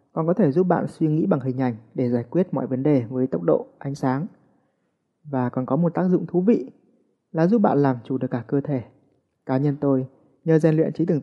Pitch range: 130-165 Hz